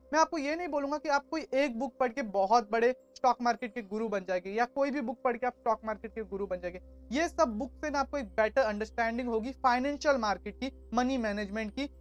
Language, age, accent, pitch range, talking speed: Hindi, 20-39, native, 225-270 Hz, 70 wpm